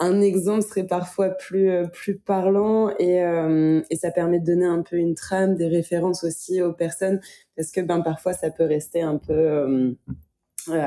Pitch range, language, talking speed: 165-190 Hz, French, 190 wpm